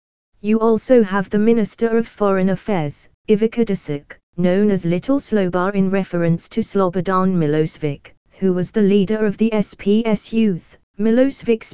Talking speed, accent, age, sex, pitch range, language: 145 wpm, British, 20-39, female, 170-210 Hz, English